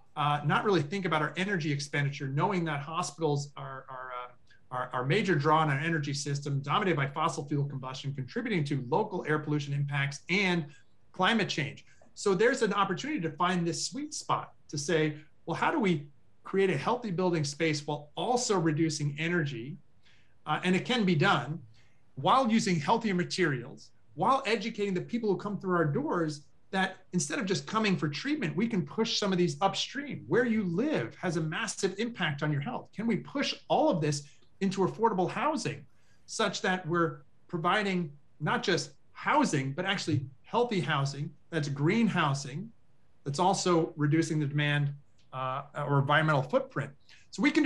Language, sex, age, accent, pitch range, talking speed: English, male, 30-49, American, 145-185 Hz, 170 wpm